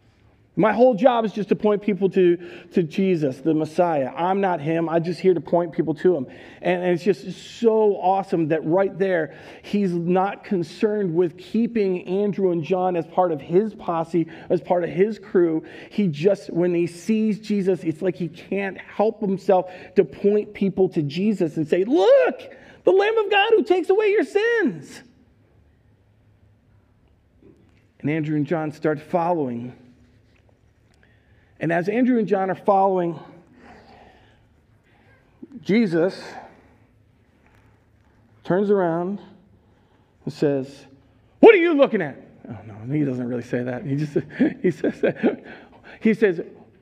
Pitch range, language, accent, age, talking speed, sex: 135-200 Hz, English, American, 40-59, 150 wpm, male